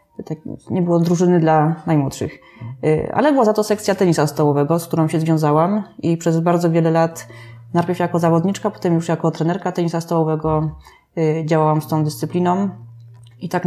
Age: 20-39